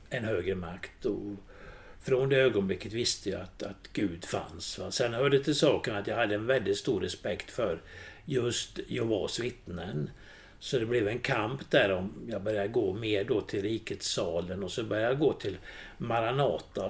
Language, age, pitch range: Swedish, 60-79, 100-130 Hz